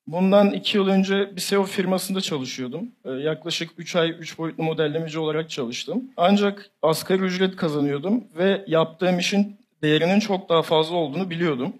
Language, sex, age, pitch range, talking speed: Turkish, male, 50-69, 160-205 Hz, 150 wpm